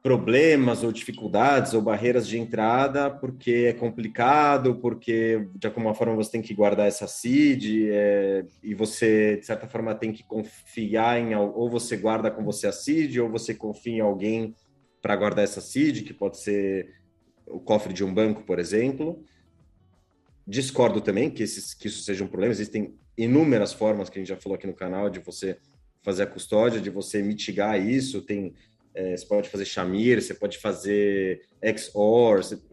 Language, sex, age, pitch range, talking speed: Portuguese, male, 30-49, 100-125 Hz, 175 wpm